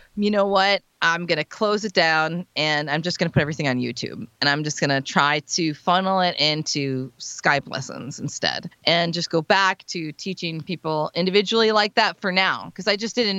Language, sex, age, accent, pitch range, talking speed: English, female, 30-49, American, 155-200 Hz, 210 wpm